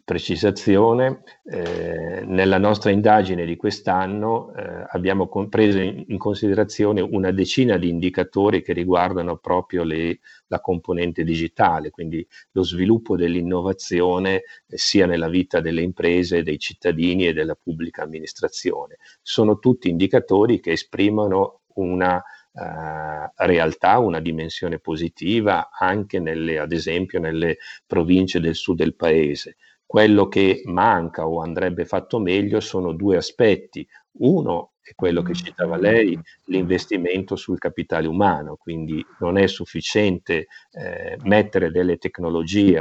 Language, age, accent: Italian, 40-59, native